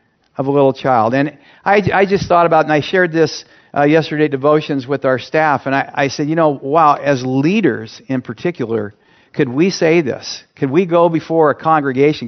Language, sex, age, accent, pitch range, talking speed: English, male, 50-69, American, 135-175 Hz, 200 wpm